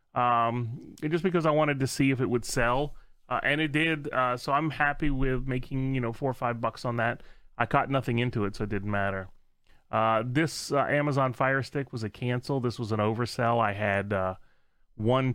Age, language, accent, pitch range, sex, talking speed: 30-49, English, American, 110-135 Hz, male, 220 wpm